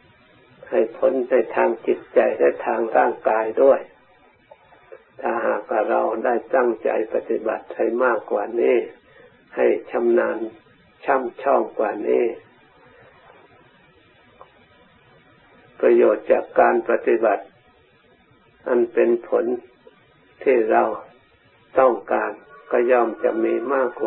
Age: 60-79